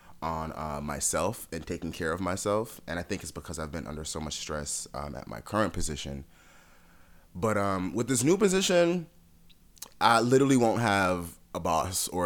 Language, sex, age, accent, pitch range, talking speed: English, male, 30-49, American, 80-100 Hz, 180 wpm